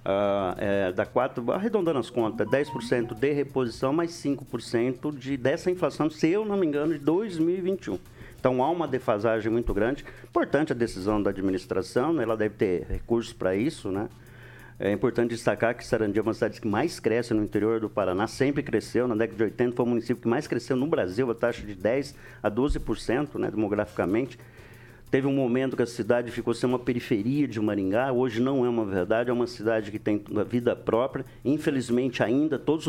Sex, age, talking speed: male, 50-69, 185 wpm